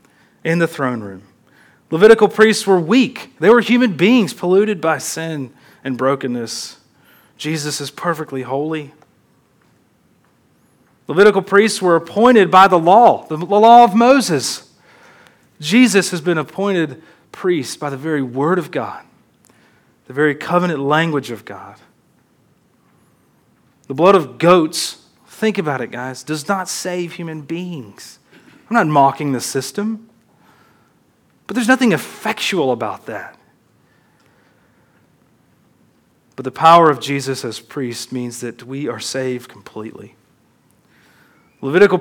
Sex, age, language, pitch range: male, 30-49, English, 140-200 Hz